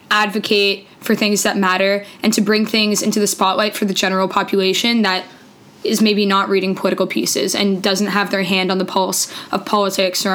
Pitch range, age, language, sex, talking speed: 195-220 Hz, 10-29, English, female, 195 wpm